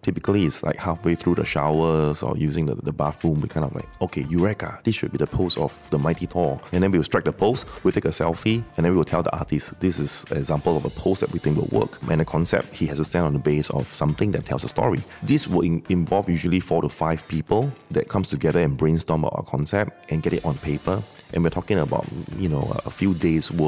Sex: male